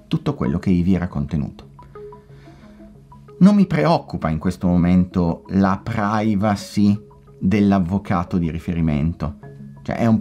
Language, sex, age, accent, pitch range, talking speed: Italian, male, 30-49, native, 90-125 Hz, 120 wpm